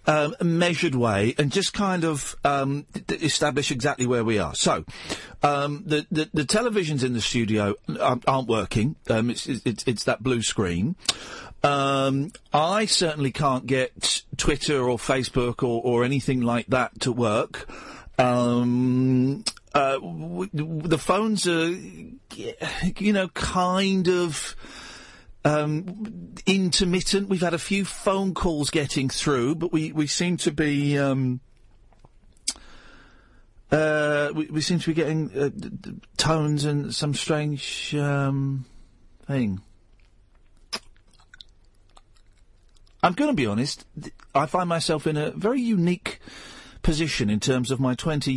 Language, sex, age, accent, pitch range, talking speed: English, male, 50-69, British, 125-170 Hz, 135 wpm